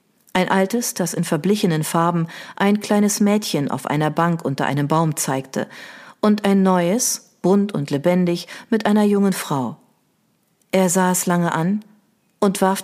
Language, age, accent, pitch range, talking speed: German, 40-59, German, 160-200 Hz, 155 wpm